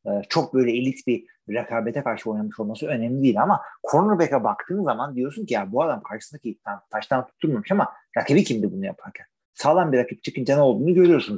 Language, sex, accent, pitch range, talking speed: Turkish, male, native, 115-180 Hz, 180 wpm